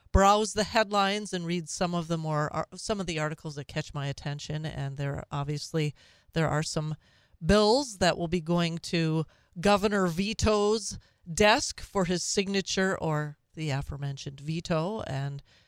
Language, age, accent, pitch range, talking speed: English, 40-59, American, 145-175 Hz, 155 wpm